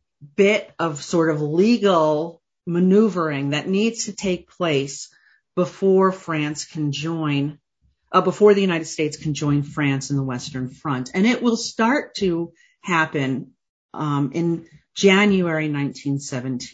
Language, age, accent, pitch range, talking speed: English, 40-59, American, 150-190 Hz, 130 wpm